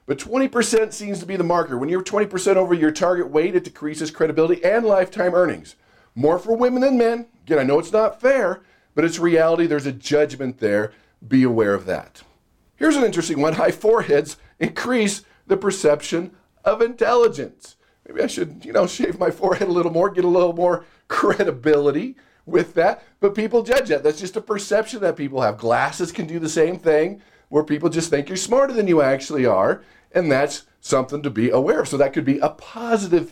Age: 50-69